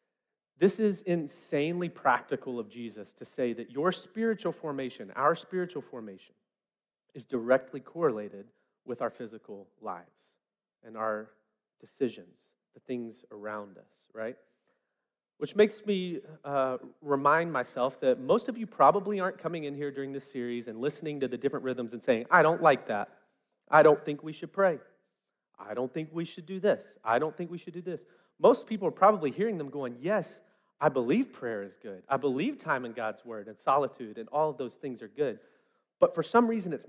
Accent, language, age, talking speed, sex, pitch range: American, English, 30-49, 185 wpm, male, 130-175 Hz